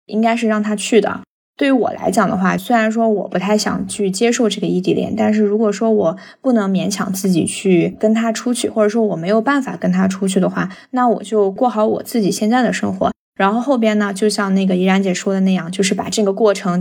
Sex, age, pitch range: female, 20-39, 200-235 Hz